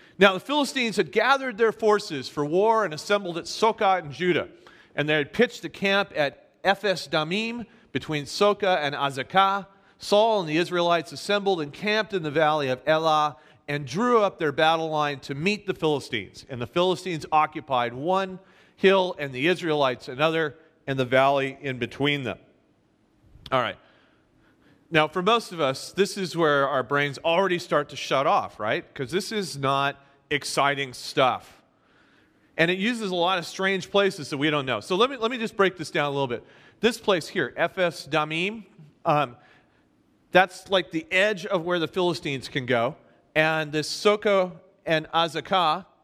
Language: English